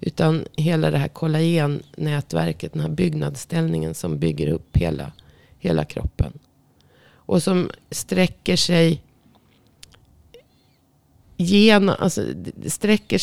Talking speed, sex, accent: 75 wpm, female, native